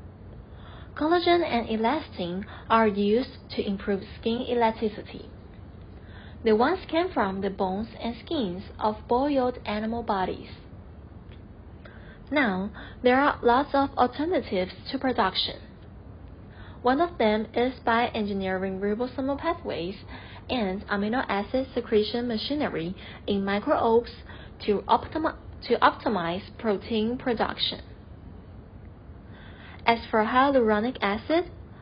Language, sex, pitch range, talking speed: English, female, 185-250 Hz, 100 wpm